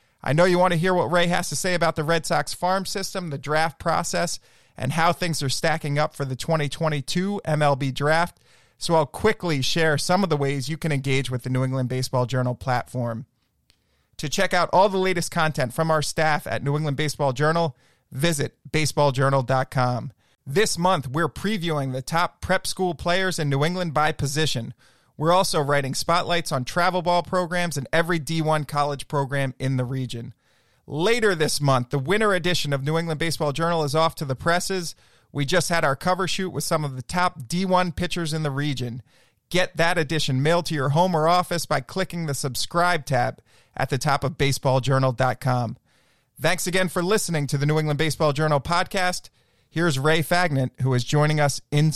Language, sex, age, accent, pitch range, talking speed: English, male, 30-49, American, 135-175 Hz, 190 wpm